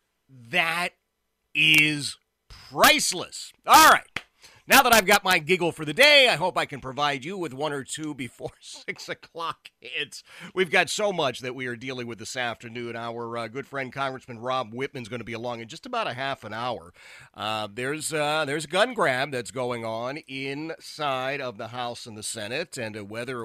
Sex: male